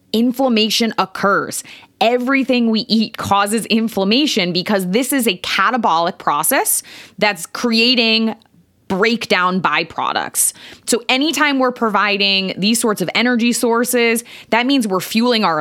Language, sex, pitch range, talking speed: English, female, 185-245 Hz, 120 wpm